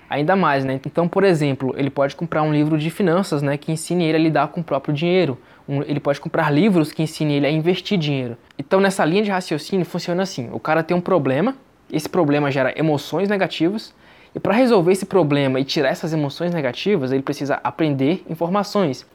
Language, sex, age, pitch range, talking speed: Portuguese, male, 20-39, 145-175 Hz, 205 wpm